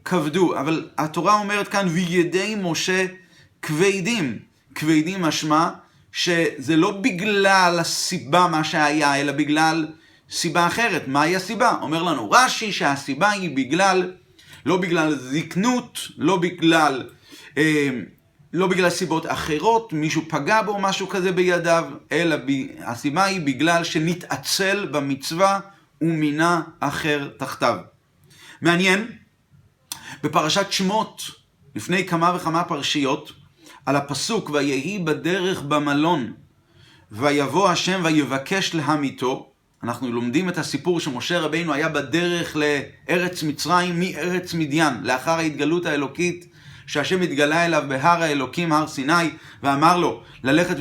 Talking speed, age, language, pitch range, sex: 110 wpm, 40-59, Hebrew, 145-180 Hz, male